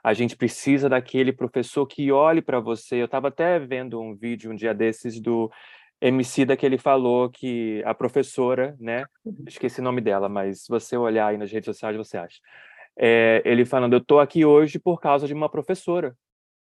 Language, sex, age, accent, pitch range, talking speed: Portuguese, male, 20-39, Brazilian, 125-150 Hz, 190 wpm